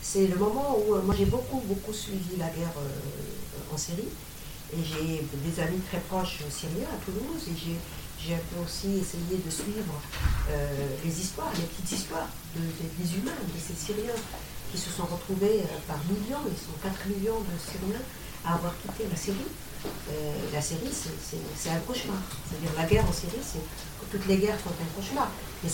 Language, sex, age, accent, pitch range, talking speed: French, female, 50-69, French, 170-220 Hz, 195 wpm